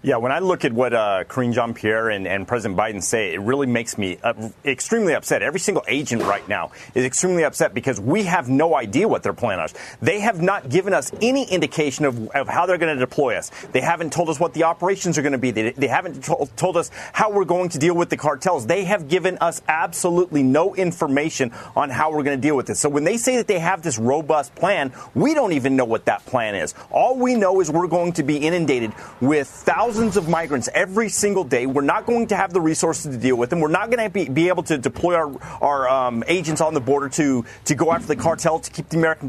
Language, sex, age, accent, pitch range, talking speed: English, male, 30-49, American, 140-190 Hz, 250 wpm